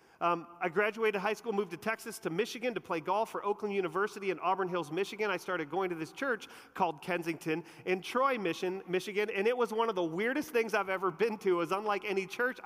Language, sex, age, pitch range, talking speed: English, male, 40-59, 180-230 Hz, 230 wpm